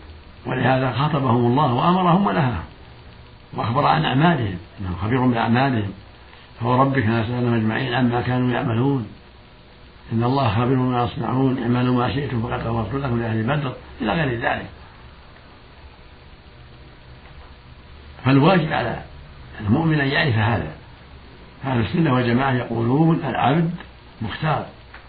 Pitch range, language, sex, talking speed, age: 100-135 Hz, Arabic, male, 105 wpm, 60-79